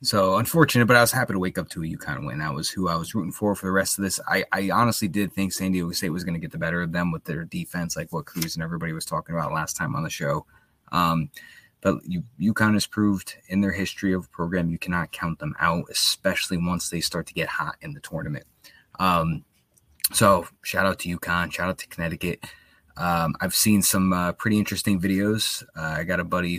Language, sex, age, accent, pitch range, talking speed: English, male, 20-39, American, 85-100 Hz, 235 wpm